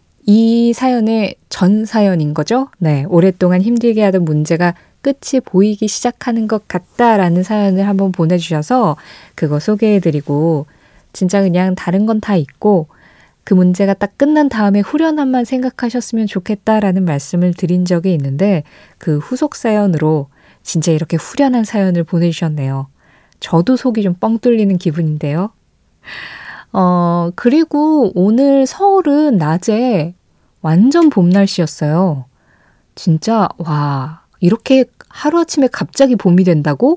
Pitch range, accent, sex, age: 170-230 Hz, native, female, 20-39